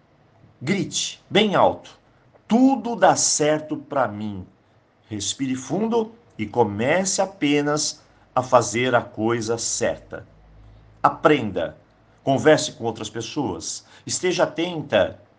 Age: 50-69